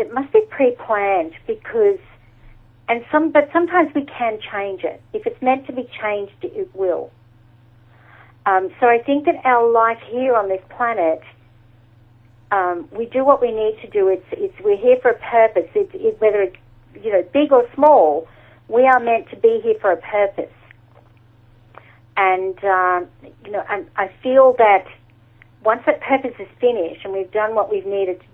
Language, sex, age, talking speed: English, female, 50-69, 180 wpm